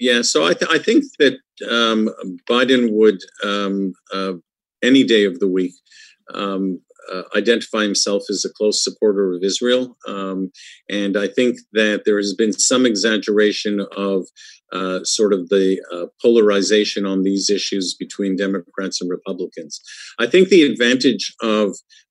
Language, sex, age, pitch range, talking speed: English, male, 50-69, 100-120 Hz, 155 wpm